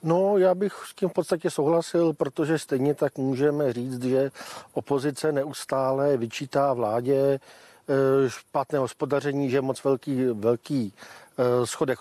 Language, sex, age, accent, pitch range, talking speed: Czech, male, 50-69, native, 130-155 Hz, 130 wpm